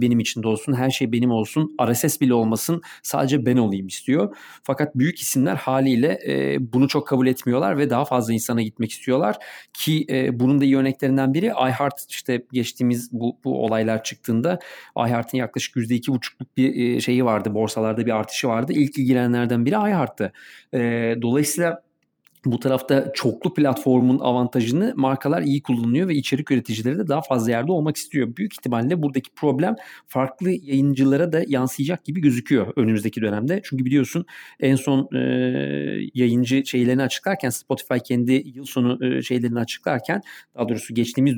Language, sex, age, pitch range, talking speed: Turkish, male, 40-59, 120-140 Hz, 150 wpm